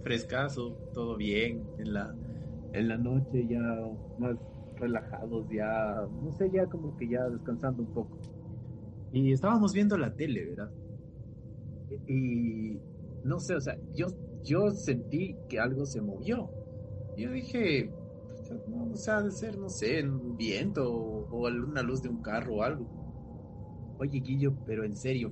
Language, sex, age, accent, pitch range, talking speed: Spanish, male, 30-49, Mexican, 115-155 Hz, 150 wpm